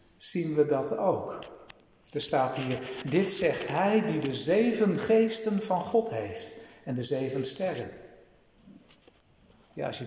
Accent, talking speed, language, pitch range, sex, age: Dutch, 145 wpm, Dutch, 150-220 Hz, male, 60-79